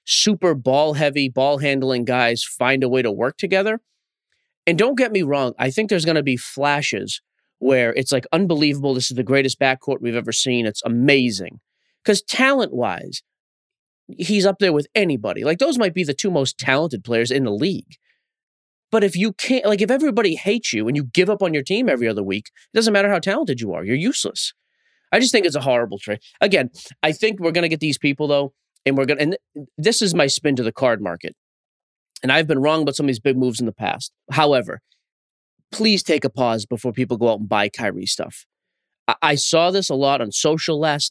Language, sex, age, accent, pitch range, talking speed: English, male, 30-49, American, 130-180 Hz, 220 wpm